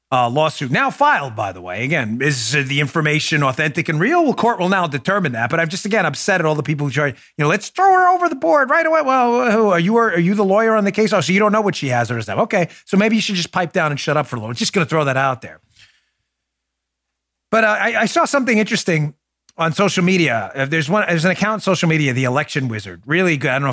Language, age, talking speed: English, 30-49, 280 wpm